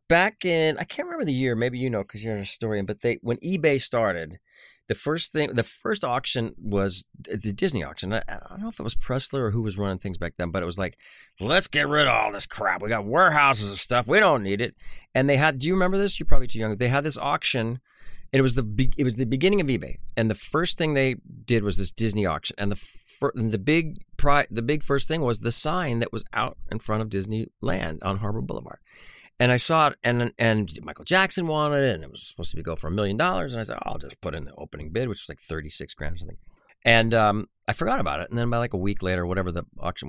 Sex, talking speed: male, 265 wpm